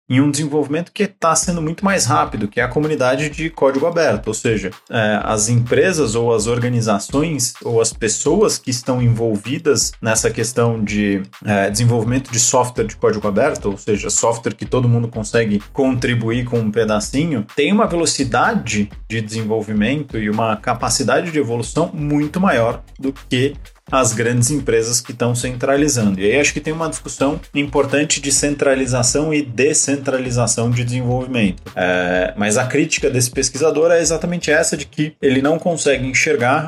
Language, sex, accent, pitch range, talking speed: Portuguese, male, Brazilian, 115-145 Hz, 160 wpm